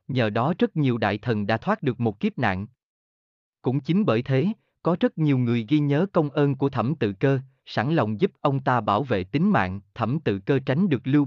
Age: 30-49